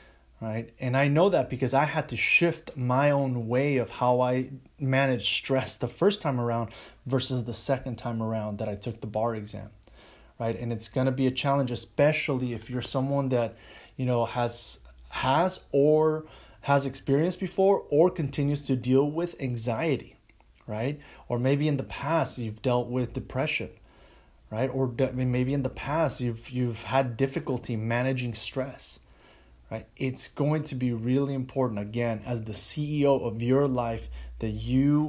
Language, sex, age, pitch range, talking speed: English, male, 30-49, 115-135 Hz, 165 wpm